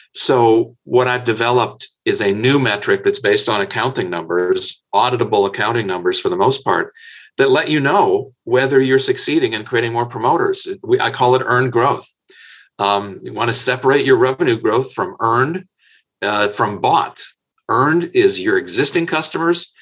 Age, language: 50-69, English